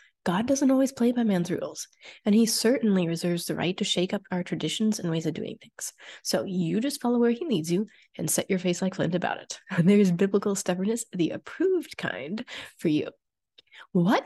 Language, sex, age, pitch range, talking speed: English, female, 20-39, 175-230 Hz, 205 wpm